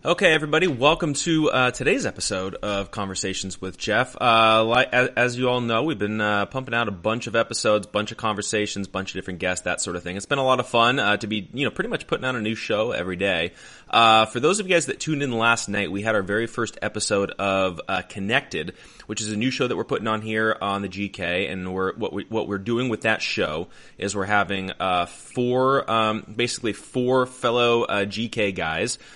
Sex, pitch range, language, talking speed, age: male, 100-120 Hz, English, 230 wpm, 20-39